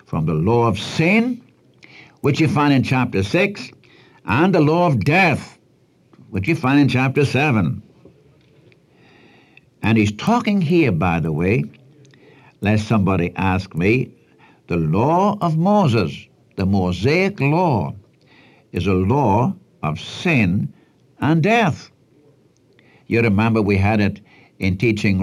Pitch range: 100-145 Hz